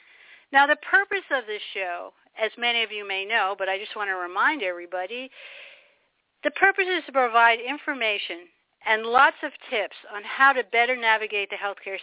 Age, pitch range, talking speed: 50-69, 215-280 Hz, 180 wpm